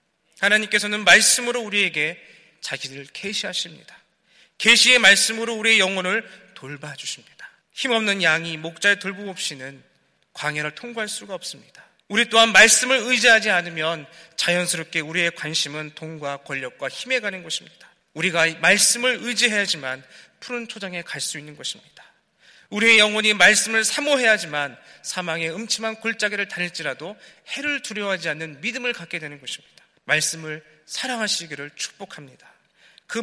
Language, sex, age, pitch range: Korean, male, 40-59, 155-215 Hz